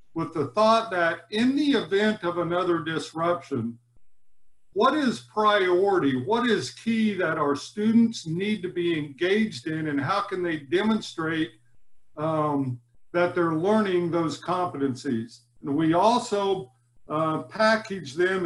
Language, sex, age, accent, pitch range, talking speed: English, male, 50-69, American, 145-210 Hz, 135 wpm